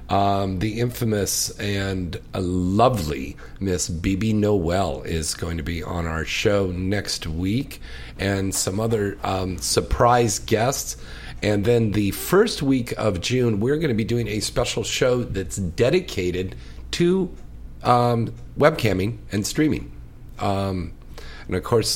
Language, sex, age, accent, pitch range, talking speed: English, male, 50-69, American, 90-110 Hz, 135 wpm